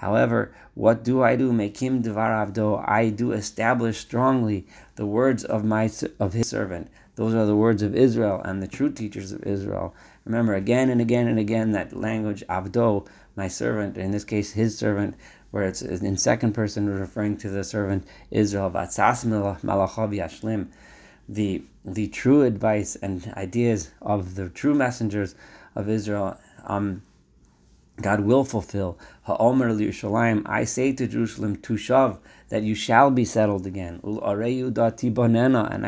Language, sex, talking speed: English, male, 140 wpm